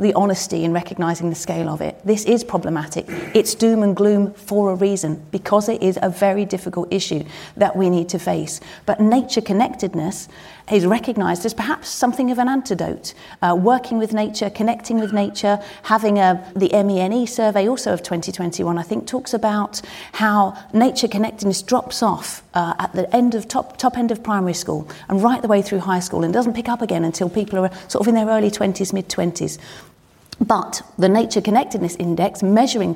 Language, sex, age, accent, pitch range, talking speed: English, female, 40-59, British, 180-220 Hz, 190 wpm